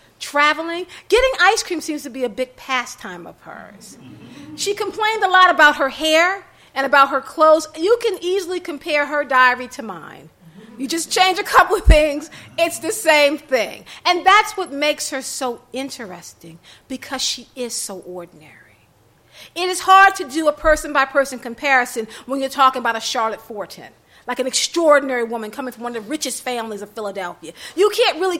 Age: 40-59